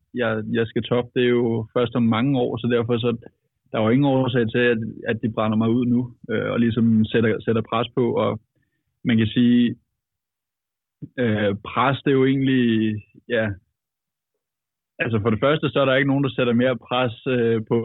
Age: 20-39